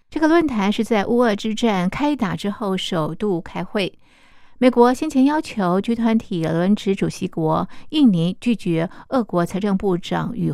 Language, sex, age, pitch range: Chinese, female, 50-69, 180-235 Hz